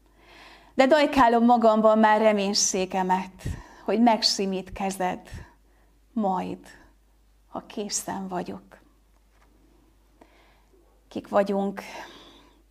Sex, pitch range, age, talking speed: female, 195-250 Hz, 30-49, 65 wpm